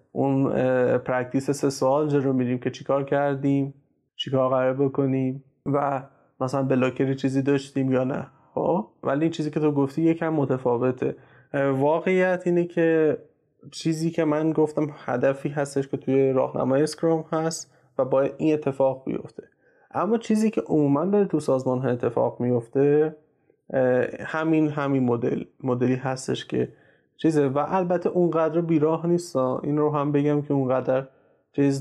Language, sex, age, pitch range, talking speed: Persian, male, 20-39, 130-155 Hz, 145 wpm